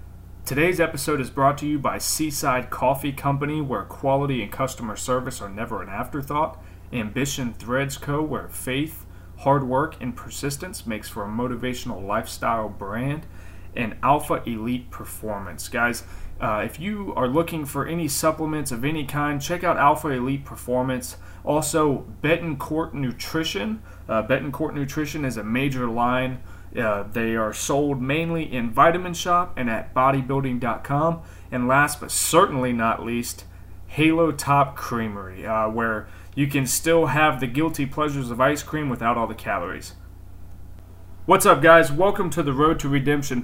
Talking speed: 150 wpm